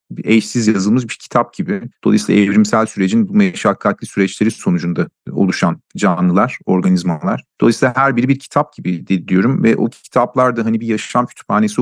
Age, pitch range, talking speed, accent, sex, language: 40-59, 95-130 Hz, 150 wpm, native, male, Turkish